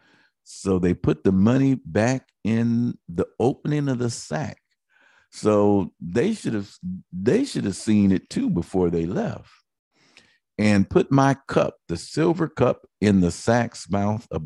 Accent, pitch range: American, 85-115 Hz